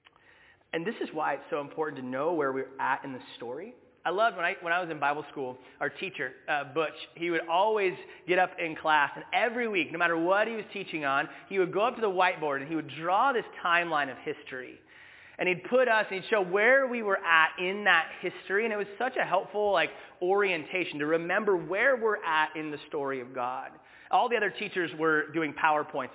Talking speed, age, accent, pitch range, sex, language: 230 wpm, 30-49, American, 150-220 Hz, male, English